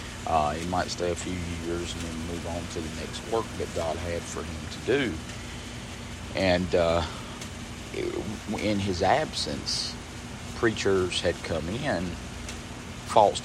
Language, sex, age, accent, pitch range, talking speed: English, male, 50-69, American, 85-100 Hz, 145 wpm